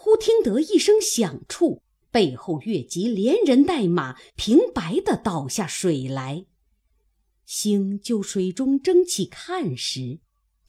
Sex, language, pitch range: female, Chinese, 160-265 Hz